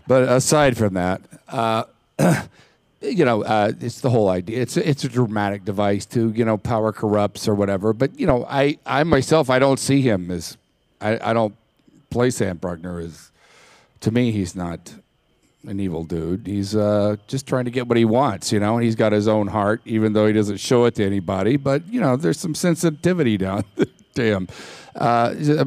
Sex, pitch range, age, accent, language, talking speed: male, 105-135 Hz, 50-69, American, English, 195 wpm